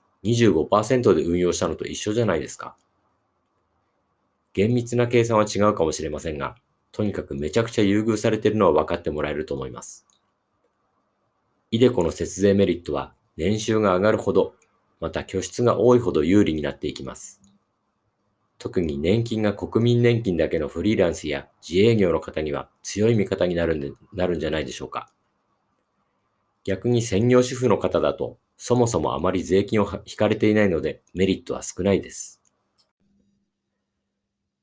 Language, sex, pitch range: Japanese, male, 85-110 Hz